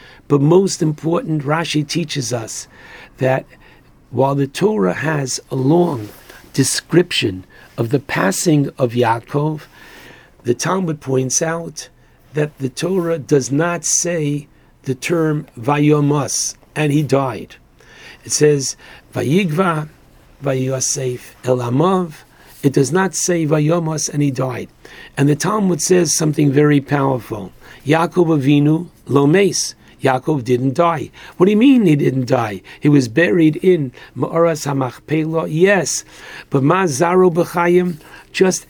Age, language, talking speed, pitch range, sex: 60-79, English, 120 wpm, 135-170 Hz, male